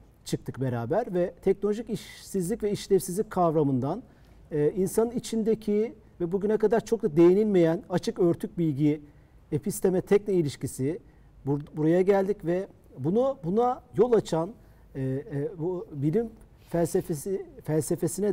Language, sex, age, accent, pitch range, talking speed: Turkish, male, 50-69, native, 155-195 Hz, 110 wpm